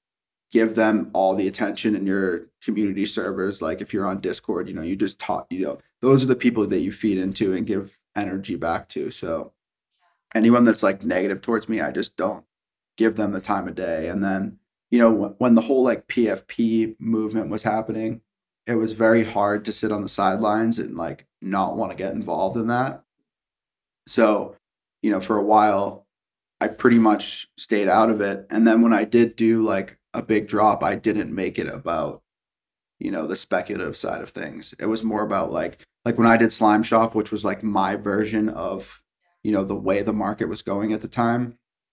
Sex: male